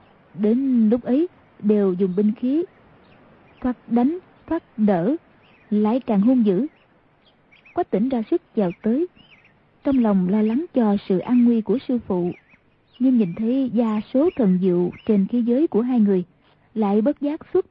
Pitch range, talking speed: 205-265 Hz, 165 wpm